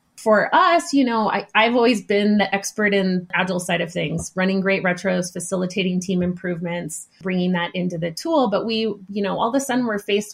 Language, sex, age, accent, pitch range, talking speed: English, female, 30-49, American, 185-230 Hz, 205 wpm